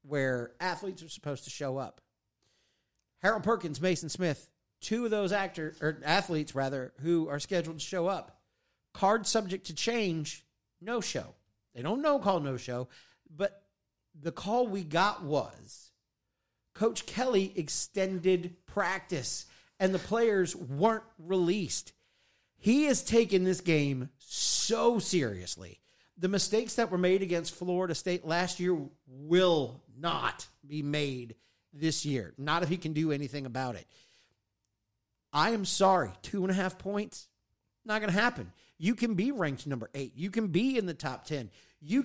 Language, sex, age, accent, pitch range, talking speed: English, male, 40-59, American, 140-205 Hz, 155 wpm